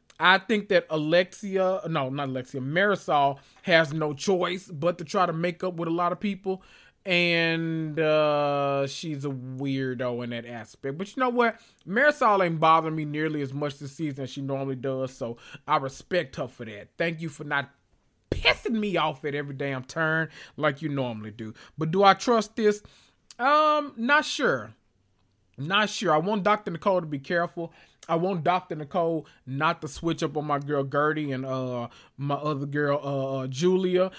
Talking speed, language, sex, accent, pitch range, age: 185 wpm, English, male, American, 140-195 Hz, 20-39